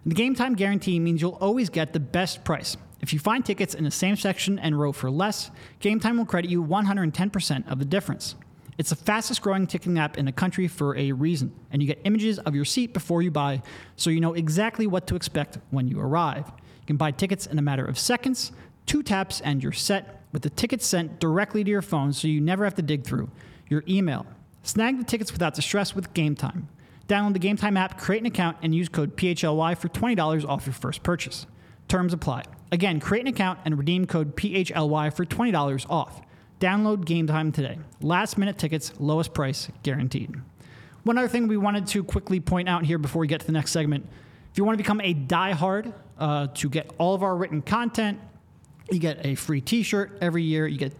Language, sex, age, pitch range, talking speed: English, male, 30-49, 150-195 Hz, 215 wpm